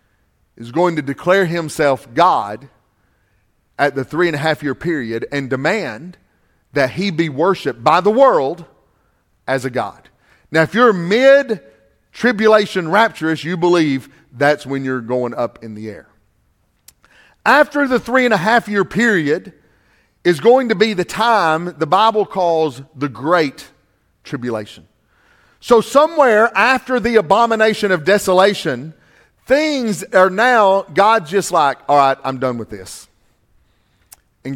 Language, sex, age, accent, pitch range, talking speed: English, male, 40-59, American, 130-205 Hz, 125 wpm